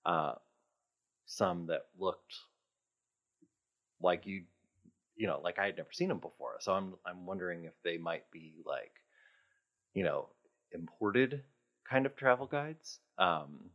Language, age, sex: English, 30-49, male